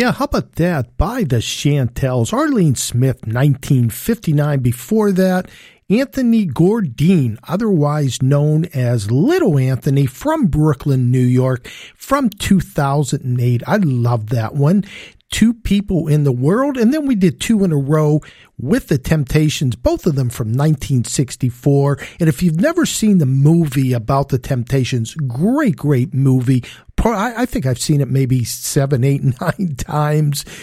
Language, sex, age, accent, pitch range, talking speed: English, male, 50-69, American, 130-185 Hz, 145 wpm